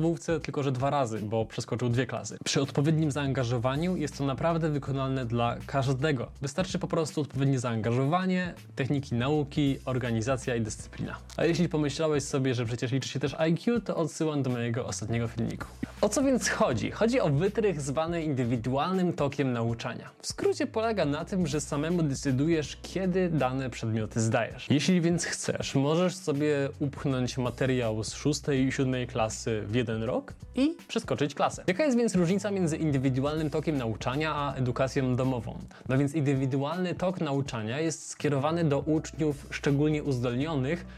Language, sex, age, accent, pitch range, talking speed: Polish, male, 20-39, native, 130-160 Hz, 155 wpm